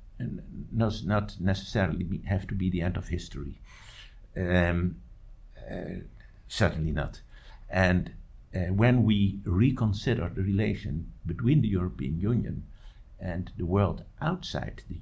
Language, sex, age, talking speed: English, male, 60-79, 125 wpm